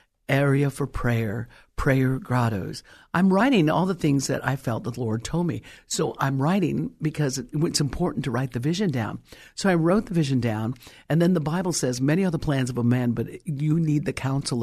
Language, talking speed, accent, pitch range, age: English, 210 wpm, American, 120-155 Hz, 50-69